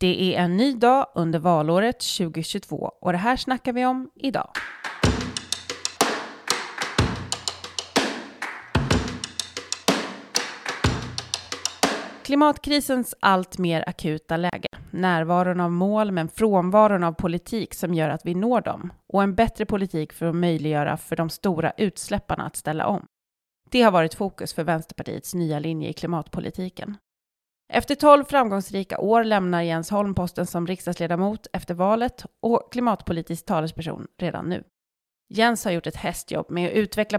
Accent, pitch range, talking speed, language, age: native, 165-215 Hz, 130 wpm, Swedish, 30-49